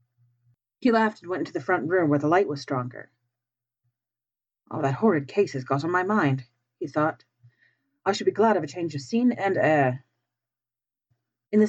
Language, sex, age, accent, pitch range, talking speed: English, female, 40-59, American, 125-180 Hz, 190 wpm